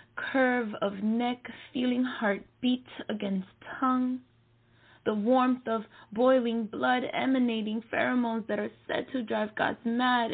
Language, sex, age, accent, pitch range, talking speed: English, female, 20-39, American, 205-255 Hz, 130 wpm